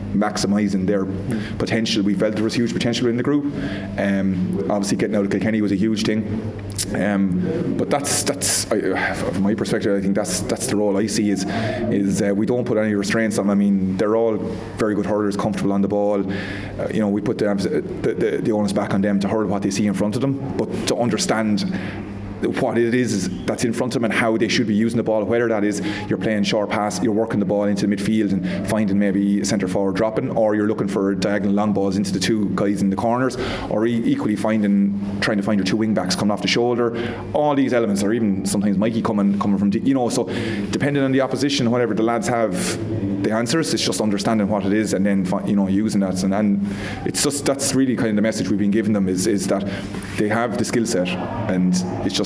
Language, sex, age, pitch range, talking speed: English, male, 20-39, 100-110 Hz, 245 wpm